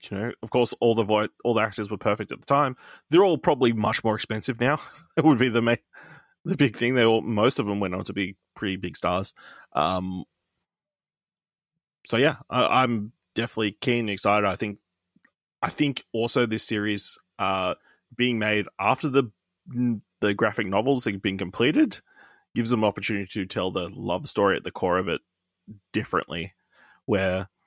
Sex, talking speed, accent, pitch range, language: male, 180 wpm, Australian, 100-125 Hz, English